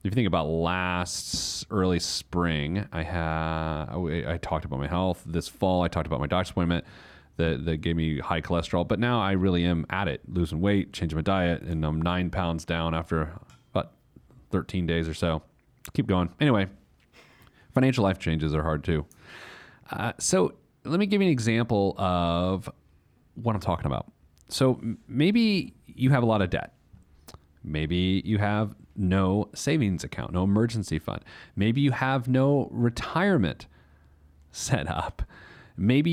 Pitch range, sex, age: 80-115 Hz, male, 30-49